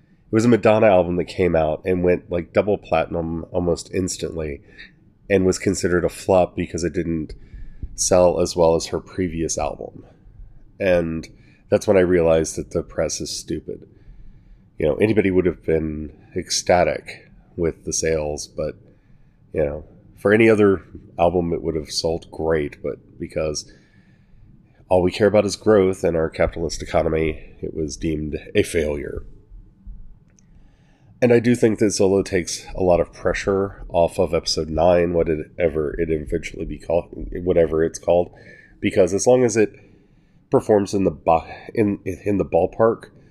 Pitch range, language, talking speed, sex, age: 85-100 Hz, English, 155 wpm, male, 30-49